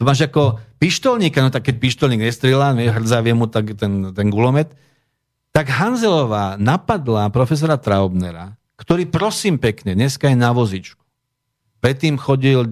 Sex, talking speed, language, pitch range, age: male, 125 wpm, English, 110-145 Hz, 50-69